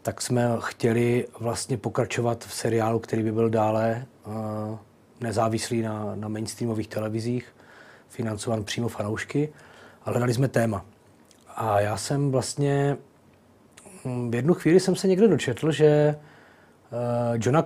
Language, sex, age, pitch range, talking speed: Czech, male, 30-49, 115-130 Hz, 120 wpm